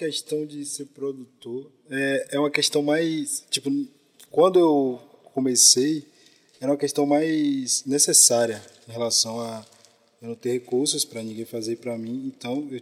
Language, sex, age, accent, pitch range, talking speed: Portuguese, male, 20-39, Brazilian, 125-155 Hz, 150 wpm